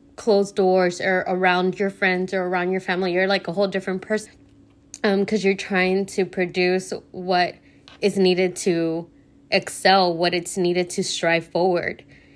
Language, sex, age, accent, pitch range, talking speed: English, female, 20-39, American, 175-195 Hz, 160 wpm